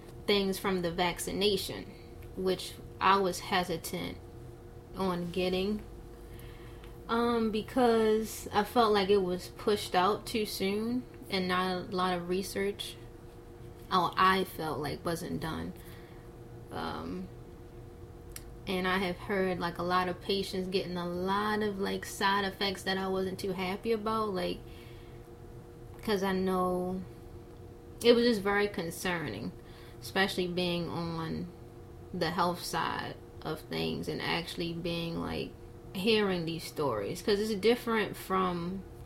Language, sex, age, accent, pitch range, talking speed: English, female, 20-39, American, 120-195 Hz, 130 wpm